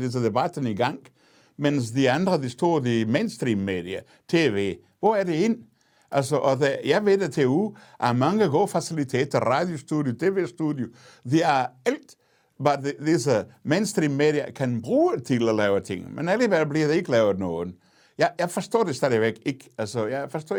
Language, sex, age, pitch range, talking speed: Danish, male, 60-79, 125-170 Hz, 170 wpm